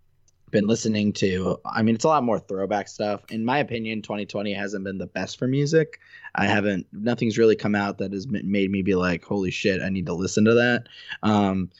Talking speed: 215 wpm